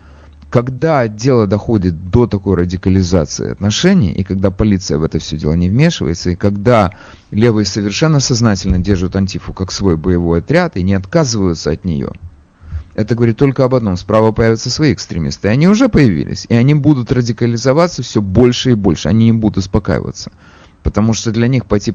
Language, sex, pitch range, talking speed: Russian, male, 90-120 Hz, 170 wpm